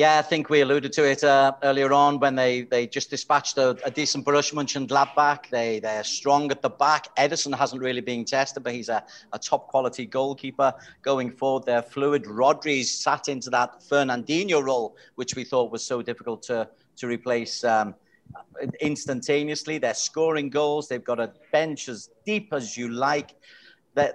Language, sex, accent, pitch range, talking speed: English, male, British, 125-150 Hz, 175 wpm